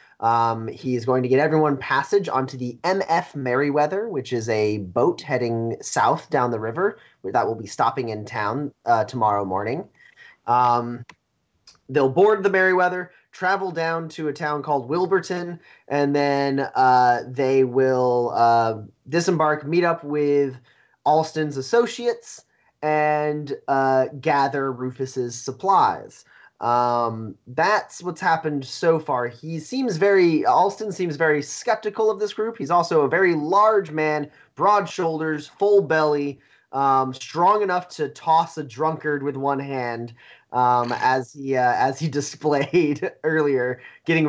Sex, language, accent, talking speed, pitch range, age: male, English, American, 140 wpm, 125-165 Hz, 30-49